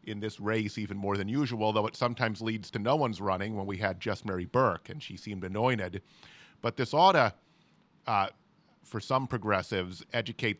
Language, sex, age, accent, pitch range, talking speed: English, male, 40-59, American, 105-125 Hz, 195 wpm